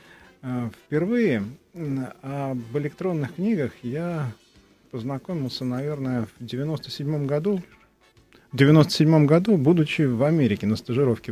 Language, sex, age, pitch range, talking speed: Russian, male, 30-49, 115-150 Hz, 95 wpm